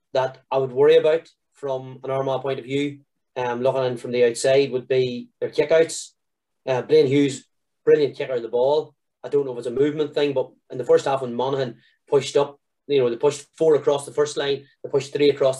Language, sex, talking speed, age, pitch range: English, male, 225 wpm, 30-49, 130-155 Hz